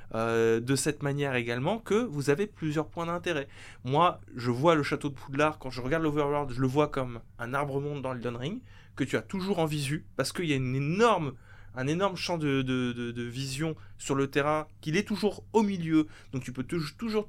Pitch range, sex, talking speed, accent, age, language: 125-165 Hz, male, 220 wpm, French, 20-39, French